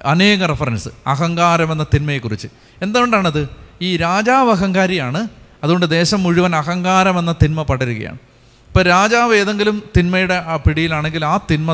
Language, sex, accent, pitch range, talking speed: Malayalam, male, native, 140-185 Hz, 110 wpm